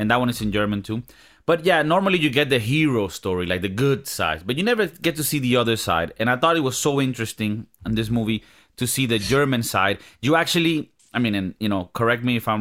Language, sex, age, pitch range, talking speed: English, male, 30-49, 115-155 Hz, 255 wpm